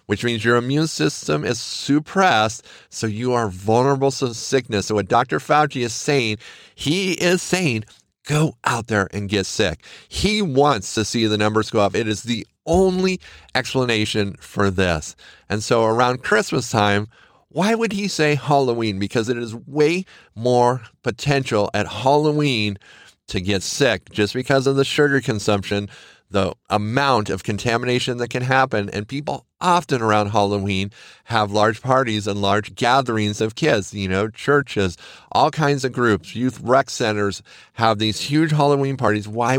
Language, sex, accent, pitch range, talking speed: English, male, American, 100-135 Hz, 160 wpm